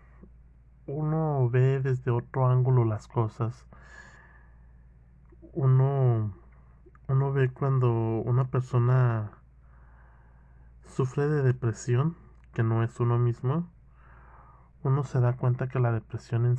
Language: Spanish